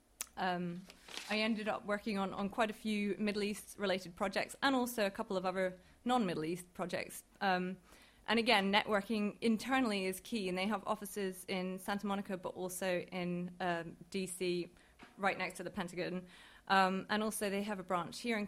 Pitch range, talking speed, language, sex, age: 185-220 Hz, 180 wpm, English, female, 20-39